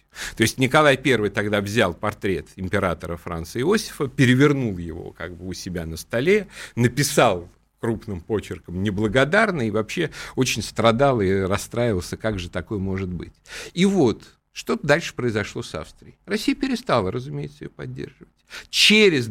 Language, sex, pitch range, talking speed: Russian, male, 95-135 Hz, 145 wpm